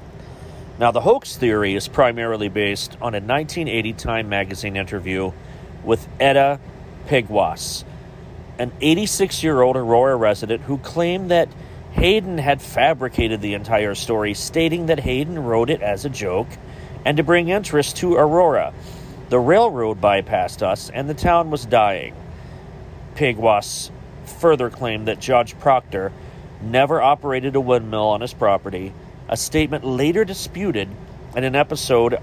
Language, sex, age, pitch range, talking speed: English, male, 40-59, 110-145 Hz, 135 wpm